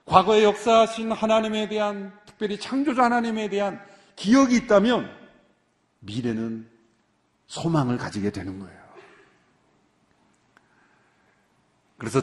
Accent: native